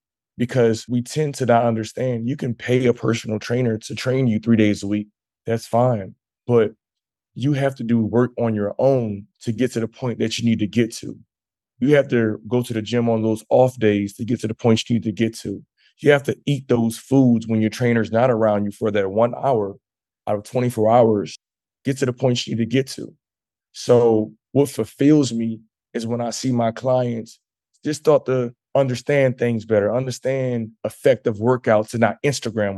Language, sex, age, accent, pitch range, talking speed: English, male, 20-39, American, 110-125 Hz, 205 wpm